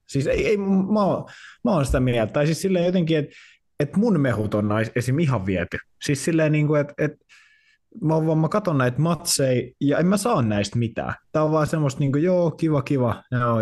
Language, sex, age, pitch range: Finnish, male, 20-39, 110-150 Hz